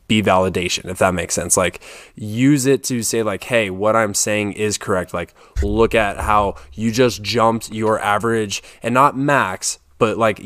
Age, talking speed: 20-39, 180 wpm